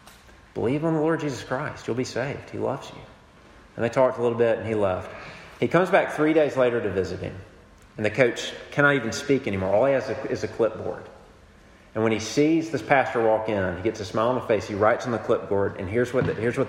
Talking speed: 250 wpm